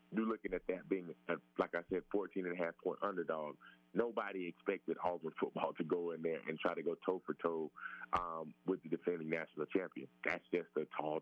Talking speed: 210 wpm